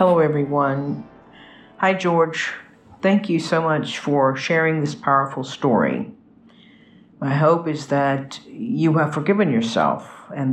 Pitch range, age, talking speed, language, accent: 135-205 Hz, 50-69, 125 wpm, English, American